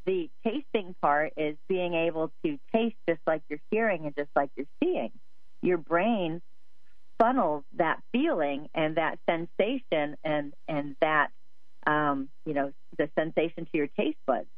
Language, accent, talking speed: English, American, 150 wpm